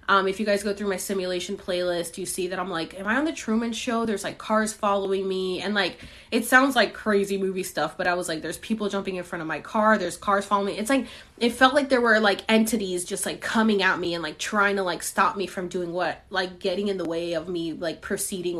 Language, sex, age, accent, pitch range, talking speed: English, female, 20-39, American, 180-215 Hz, 265 wpm